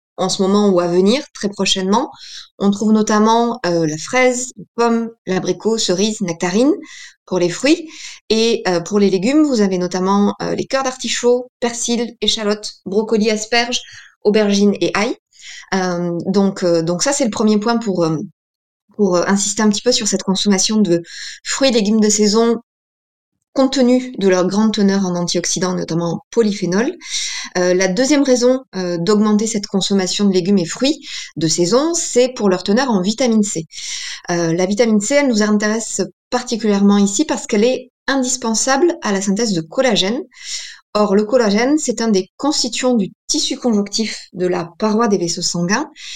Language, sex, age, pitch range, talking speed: French, female, 20-39, 190-245 Hz, 170 wpm